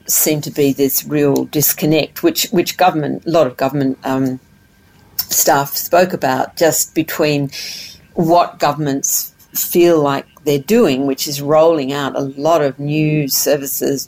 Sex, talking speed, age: female, 145 wpm, 50-69